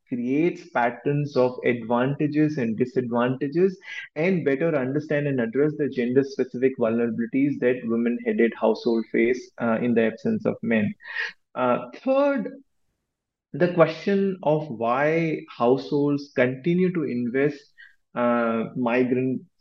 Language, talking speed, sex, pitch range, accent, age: English, 110 wpm, male, 120-145 Hz, Indian, 20-39